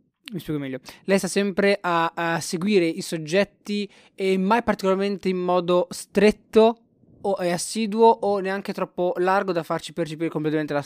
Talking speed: 155 wpm